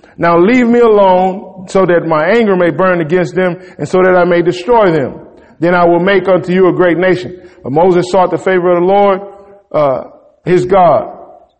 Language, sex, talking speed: English, male, 200 wpm